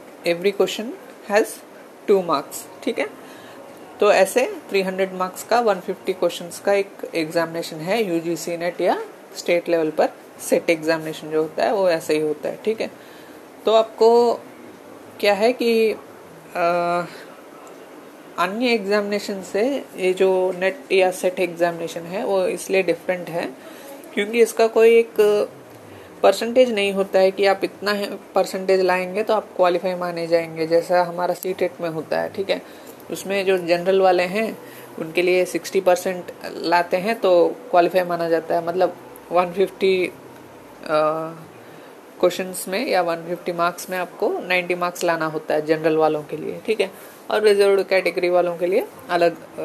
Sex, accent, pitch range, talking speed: female, native, 170-205 Hz, 150 wpm